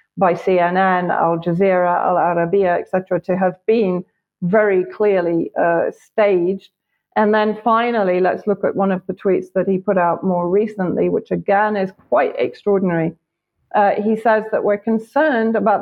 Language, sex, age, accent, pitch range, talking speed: English, female, 40-59, British, 175-205 Hz, 165 wpm